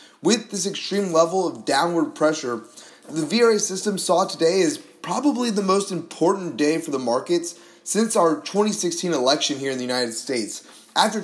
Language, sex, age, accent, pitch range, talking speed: English, male, 30-49, American, 130-185 Hz, 165 wpm